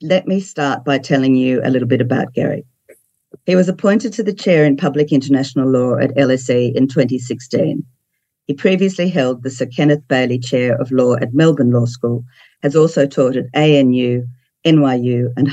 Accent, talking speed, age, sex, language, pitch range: Australian, 180 wpm, 50-69, female, English, 130-150 Hz